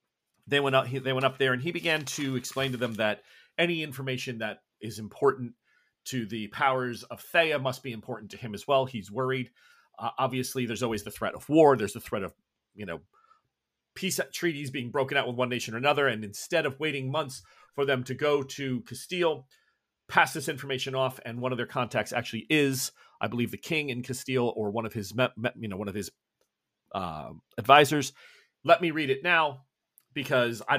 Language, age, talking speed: English, 40-59, 205 wpm